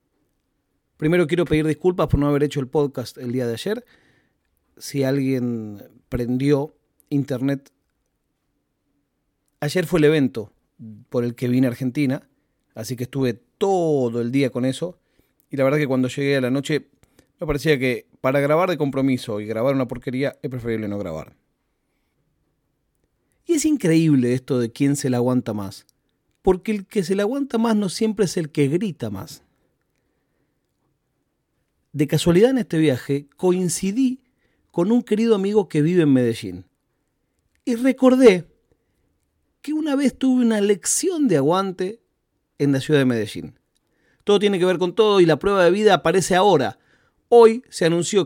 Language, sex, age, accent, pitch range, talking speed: Spanish, male, 40-59, Argentinian, 130-190 Hz, 160 wpm